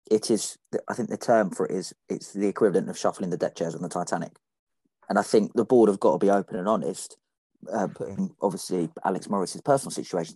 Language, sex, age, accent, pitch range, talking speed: English, male, 30-49, British, 100-130 Hz, 225 wpm